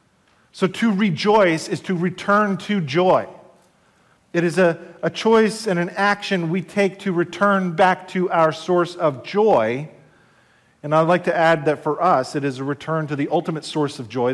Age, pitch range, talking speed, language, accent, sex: 40-59, 145-190 Hz, 185 wpm, English, American, male